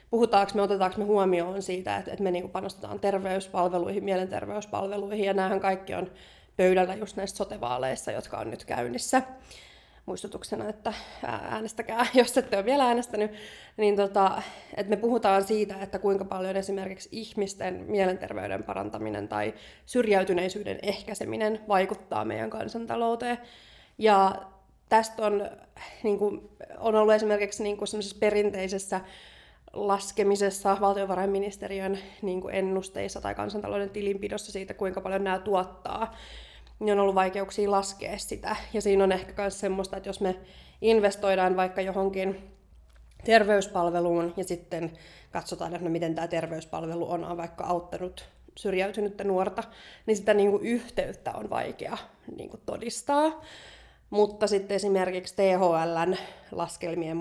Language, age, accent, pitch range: Finnish, 20-39, native, 185-210 Hz